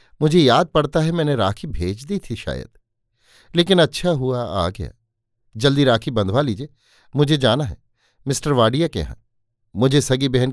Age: 50-69